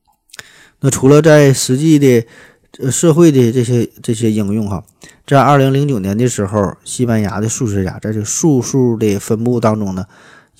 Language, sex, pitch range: Chinese, male, 105-135 Hz